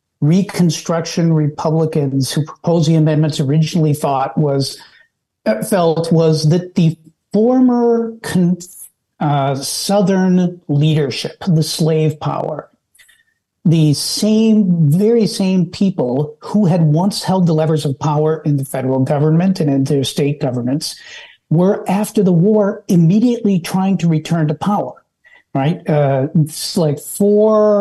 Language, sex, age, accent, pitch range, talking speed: English, male, 60-79, American, 150-185 Hz, 125 wpm